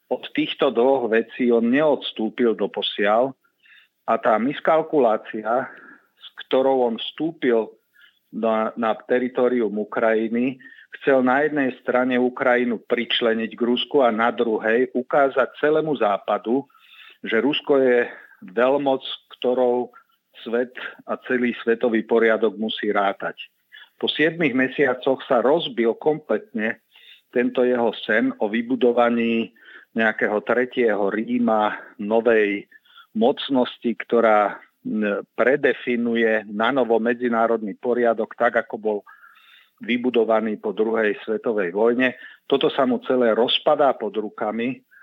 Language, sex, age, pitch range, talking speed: Slovak, male, 50-69, 110-125 Hz, 110 wpm